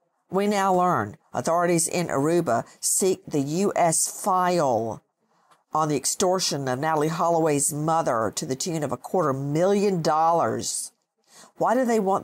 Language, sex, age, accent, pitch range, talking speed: English, female, 50-69, American, 165-225 Hz, 140 wpm